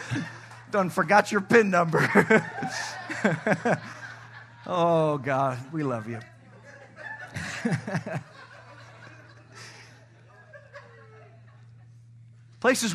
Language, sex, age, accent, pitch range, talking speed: English, male, 50-69, American, 115-130 Hz, 50 wpm